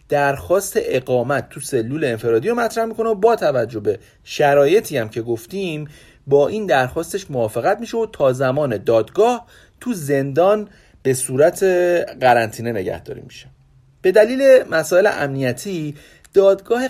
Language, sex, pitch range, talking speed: Persian, male, 120-190 Hz, 130 wpm